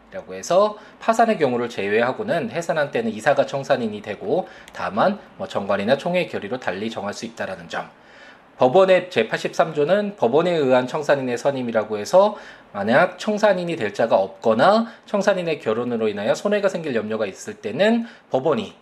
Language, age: Korean, 20-39